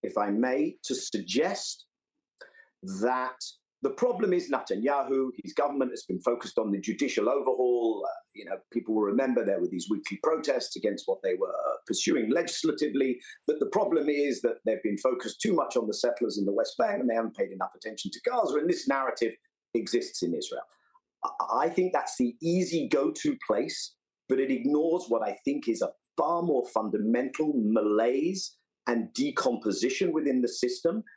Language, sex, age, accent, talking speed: English, male, 50-69, British, 175 wpm